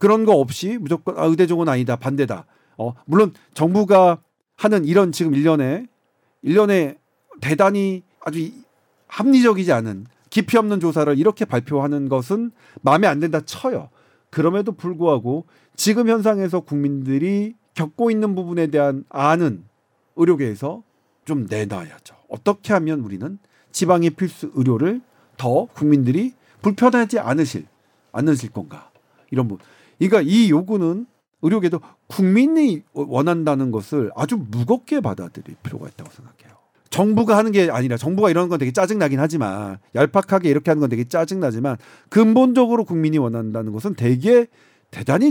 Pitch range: 135-200 Hz